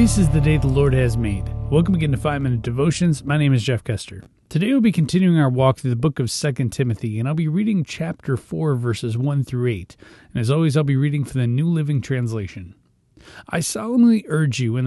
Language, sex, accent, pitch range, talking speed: English, male, American, 120-155 Hz, 225 wpm